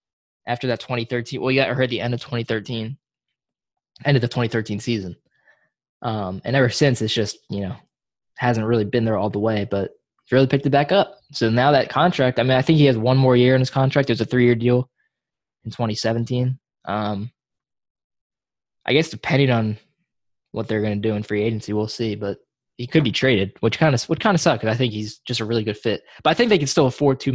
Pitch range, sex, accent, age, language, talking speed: 110-135 Hz, male, American, 10-29, English, 230 wpm